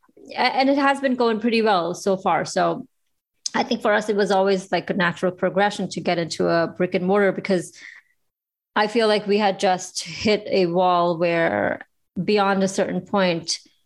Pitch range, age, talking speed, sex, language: 175-200 Hz, 20-39, 185 wpm, female, English